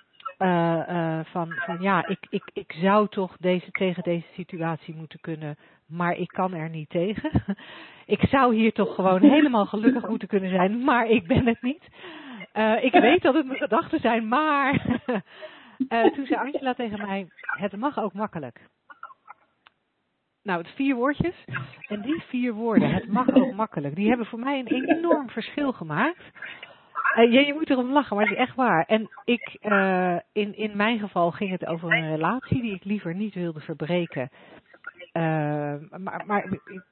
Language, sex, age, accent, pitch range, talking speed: Dutch, female, 40-59, Dutch, 175-240 Hz, 175 wpm